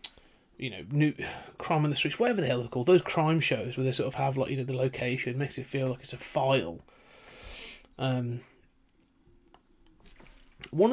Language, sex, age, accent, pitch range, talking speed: English, male, 30-49, British, 125-155 Hz, 185 wpm